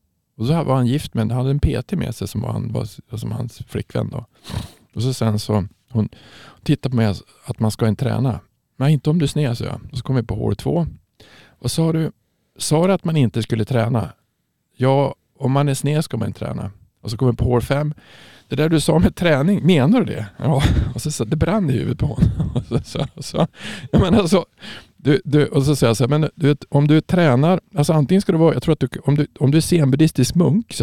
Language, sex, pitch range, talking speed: Swedish, male, 115-150 Hz, 225 wpm